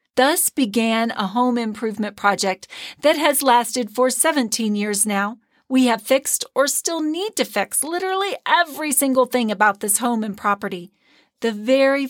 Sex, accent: female, American